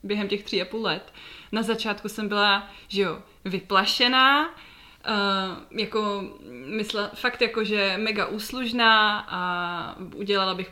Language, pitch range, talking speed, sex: Czech, 200-230 Hz, 135 wpm, female